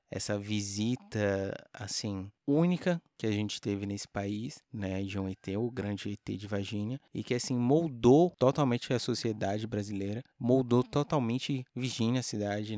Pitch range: 100-120 Hz